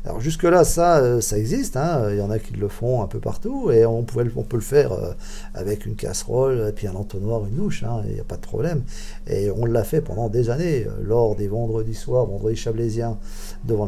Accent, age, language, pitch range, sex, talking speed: French, 50-69, French, 110-145 Hz, male, 235 wpm